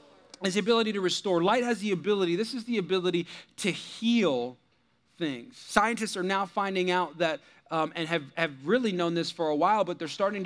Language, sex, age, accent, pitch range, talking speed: English, male, 40-59, American, 180-225 Hz, 200 wpm